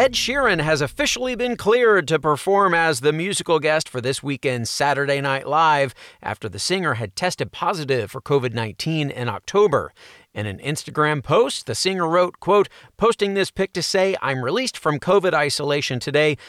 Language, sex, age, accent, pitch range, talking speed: English, male, 40-59, American, 140-185 Hz, 170 wpm